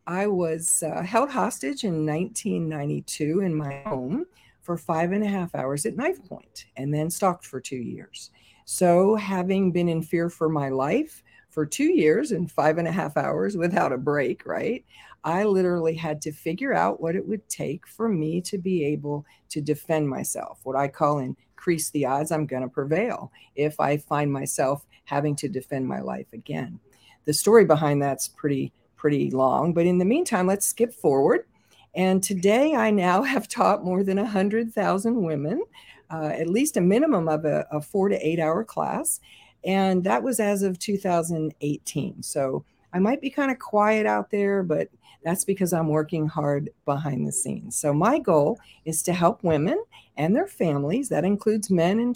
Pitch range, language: 150-200 Hz, English